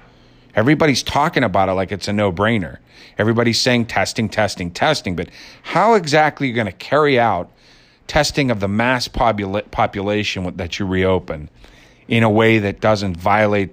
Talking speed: 160 wpm